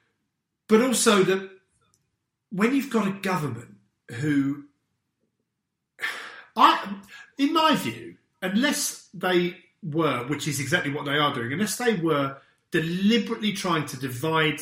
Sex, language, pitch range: male, English, 130-170 Hz